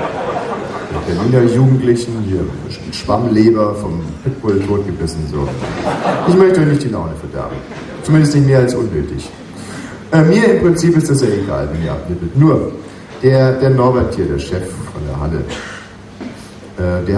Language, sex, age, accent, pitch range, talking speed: German, male, 40-59, German, 100-135 Hz, 155 wpm